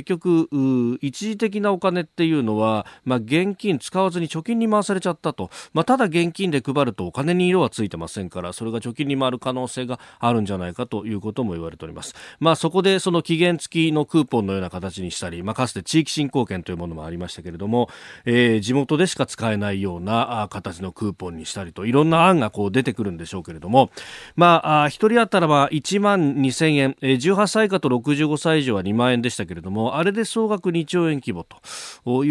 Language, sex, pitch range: Japanese, male, 105-165 Hz